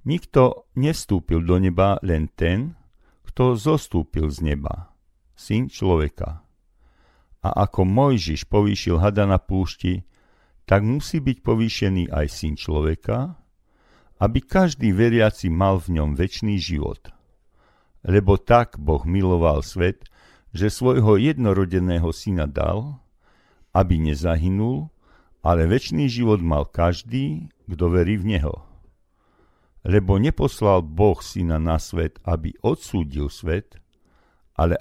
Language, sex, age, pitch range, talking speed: Slovak, male, 50-69, 85-110 Hz, 110 wpm